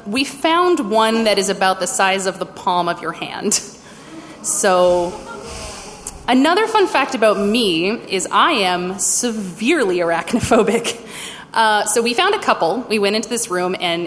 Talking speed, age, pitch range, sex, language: 160 wpm, 20-39, 185-245 Hz, female, English